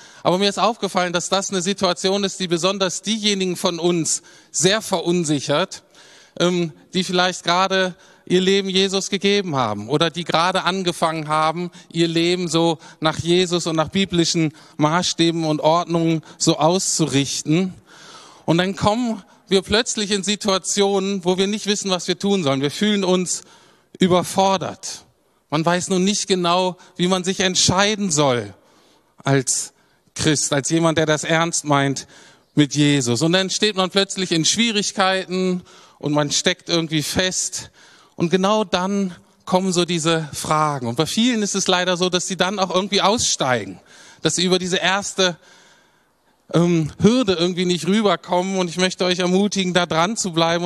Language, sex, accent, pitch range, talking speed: German, male, German, 165-195 Hz, 155 wpm